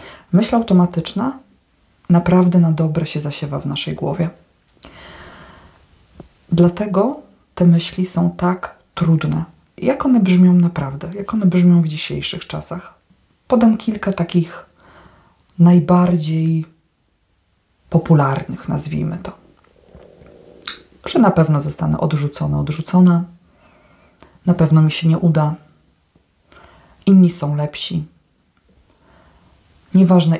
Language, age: Polish, 40-59